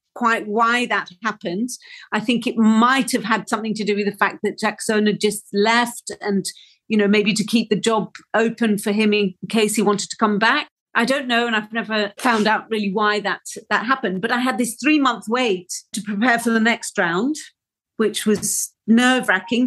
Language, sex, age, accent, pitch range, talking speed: English, female, 50-69, British, 205-235 Hz, 205 wpm